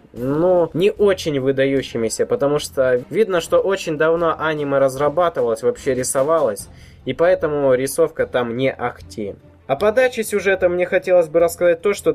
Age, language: 20-39, Russian